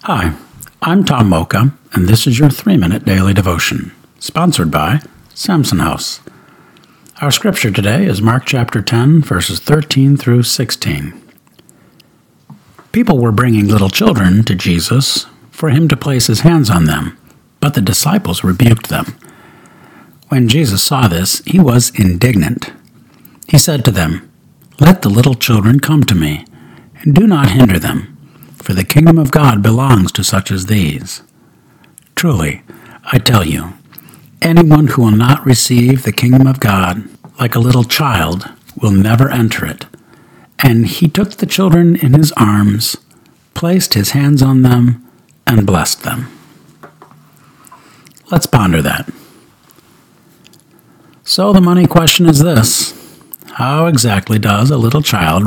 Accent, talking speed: American, 140 wpm